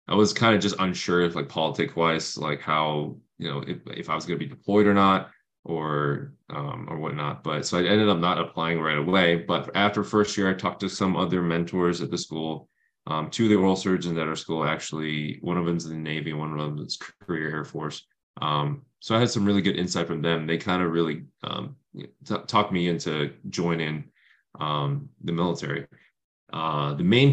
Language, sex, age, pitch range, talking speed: English, male, 20-39, 80-100 Hz, 215 wpm